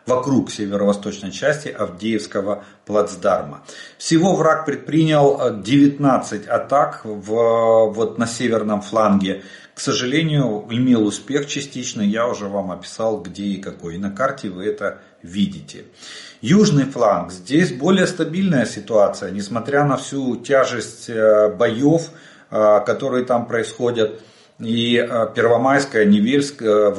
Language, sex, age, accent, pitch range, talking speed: Russian, male, 40-59, native, 105-145 Hz, 105 wpm